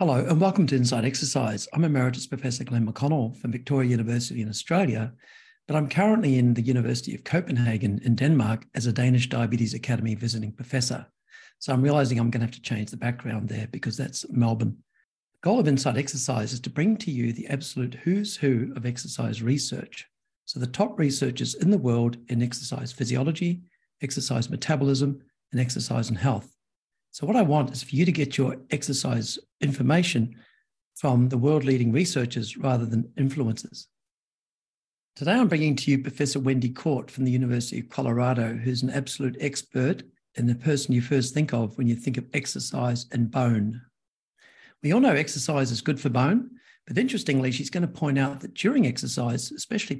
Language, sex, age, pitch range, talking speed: English, male, 60-79, 120-145 Hz, 180 wpm